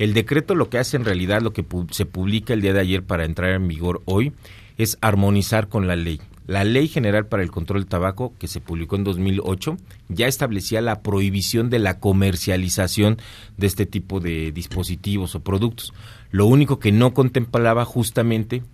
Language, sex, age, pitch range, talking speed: Spanish, male, 40-59, 90-110 Hz, 185 wpm